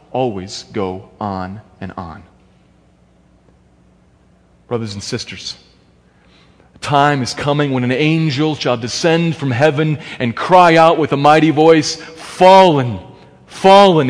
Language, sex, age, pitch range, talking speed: English, male, 40-59, 130-185 Hz, 120 wpm